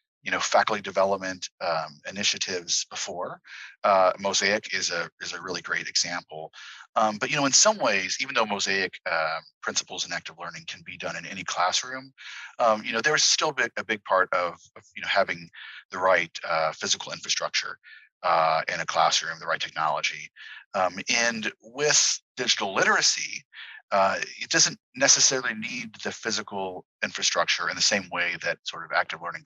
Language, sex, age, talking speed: English, male, 40-59, 175 wpm